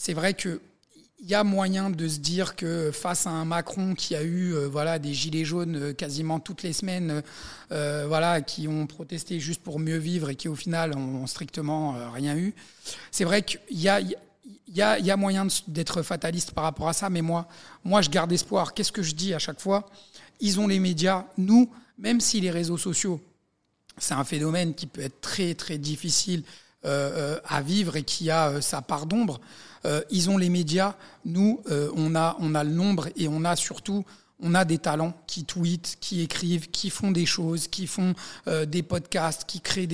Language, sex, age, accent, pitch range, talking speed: French, male, 50-69, French, 160-195 Hz, 205 wpm